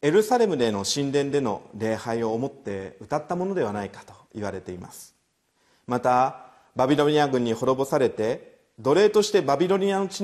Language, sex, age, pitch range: Japanese, male, 40-59, 110-165 Hz